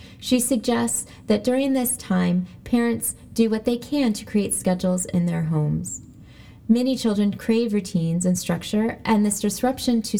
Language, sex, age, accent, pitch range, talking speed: English, female, 20-39, American, 175-235 Hz, 160 wpm